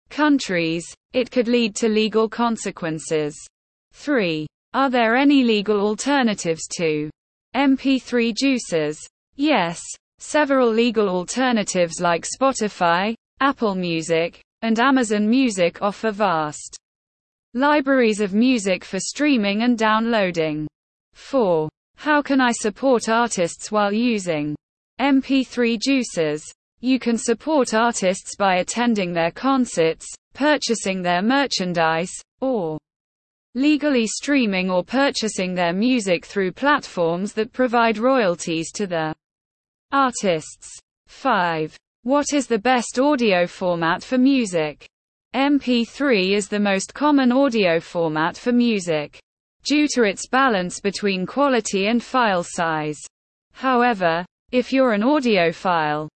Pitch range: 175-255 Hz